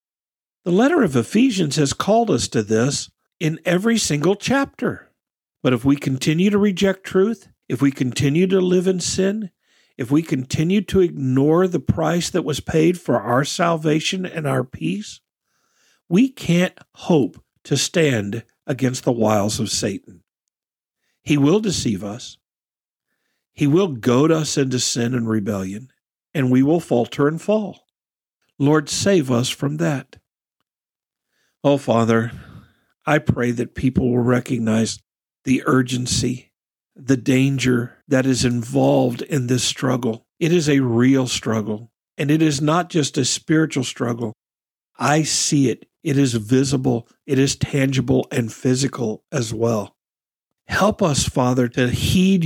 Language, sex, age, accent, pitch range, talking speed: English, male, 50-69, American, 125-165 Hz, 145 wpm